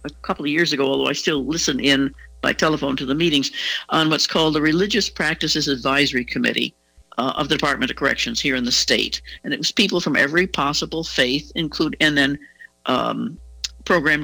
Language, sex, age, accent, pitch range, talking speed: English, female, 60-79, American, 130-170 Hz, 195 wpm